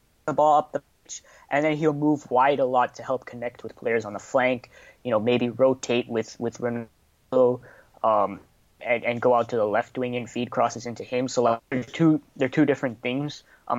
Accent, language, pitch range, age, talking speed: American, English, 115-135 Hz, 20-39, 215 wpm